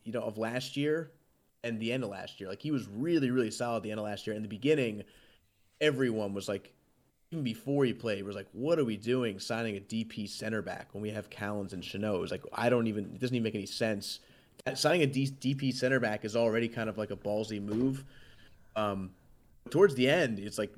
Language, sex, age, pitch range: English, male, 30-49, 105-130 Hz